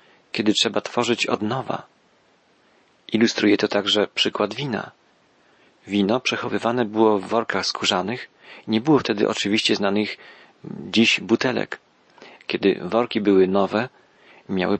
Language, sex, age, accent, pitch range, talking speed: Polish, male, 40-59, native, 105-125 Hz, 115 wpm